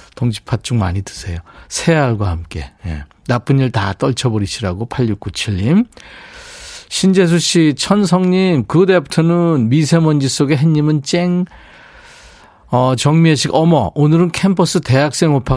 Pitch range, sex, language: 110-160 Hz, male, Korean